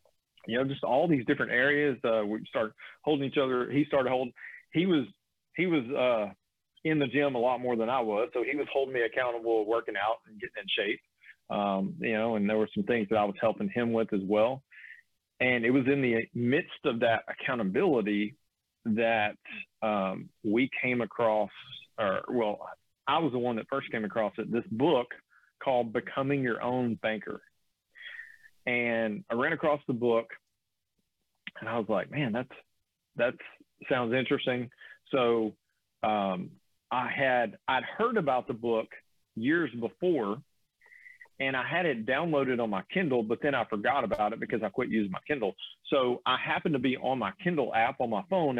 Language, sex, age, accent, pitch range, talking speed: English, male, 40-59, American, 115-140 Hz, 185 wpm